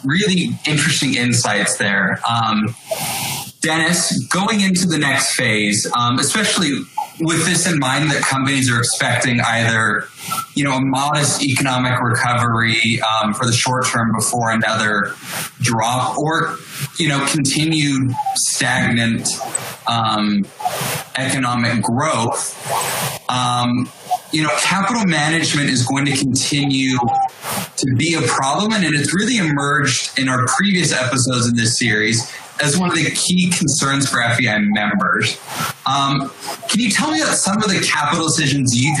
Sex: male